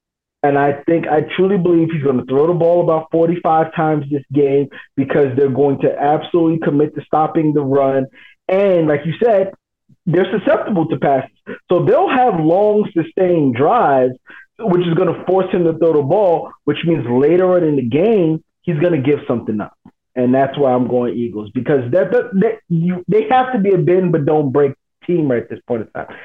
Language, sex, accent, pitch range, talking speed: English, male, American, 135-170 Hz, 200 wpm